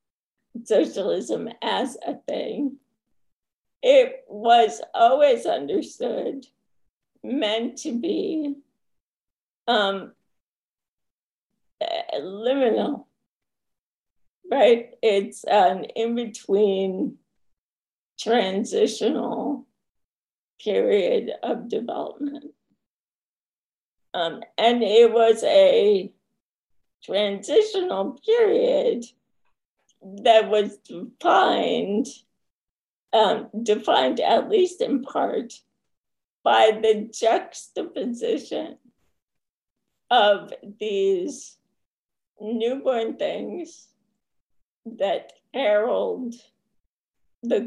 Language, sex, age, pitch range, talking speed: English, female, 50-69, 220-320 Hz, 60 wpm